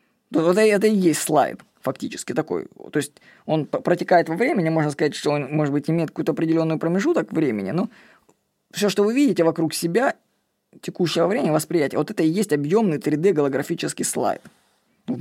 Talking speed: 170 wpm